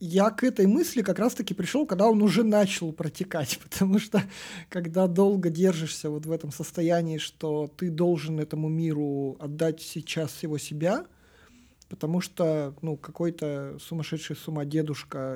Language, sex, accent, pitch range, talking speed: Russian, male, native, 145-175 Hz, 145 wpm